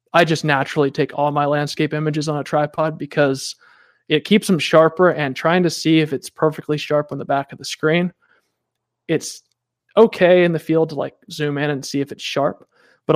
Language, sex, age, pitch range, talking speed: English, male, 20-39, 140-160 Hz, 205 wpm